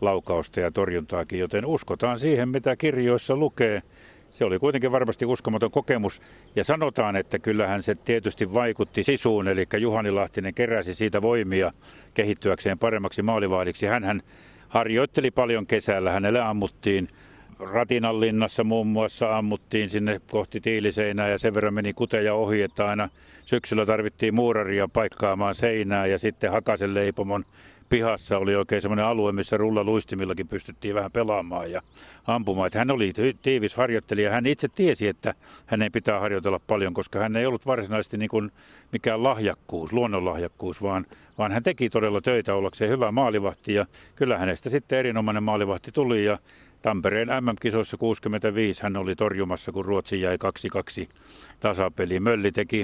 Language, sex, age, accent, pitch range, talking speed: Finnish, male, 60-79, native, 100-115 Hz, 140 wpm